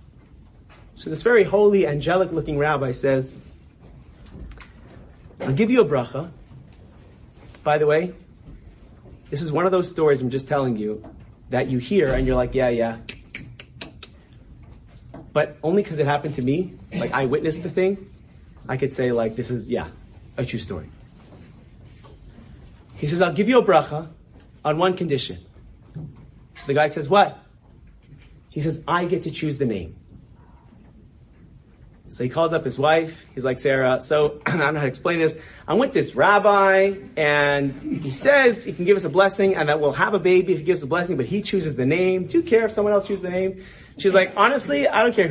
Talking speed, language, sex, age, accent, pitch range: 185 wpm, English, male, 30-49, American, 130-185 Hz